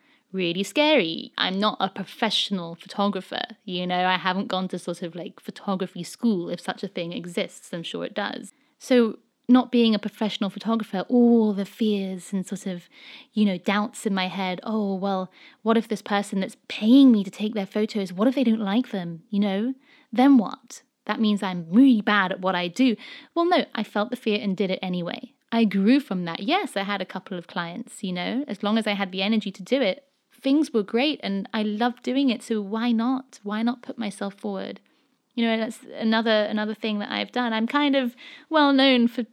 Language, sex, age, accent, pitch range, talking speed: English, female, 20-39, British, 195-250 Hz, 215 wpm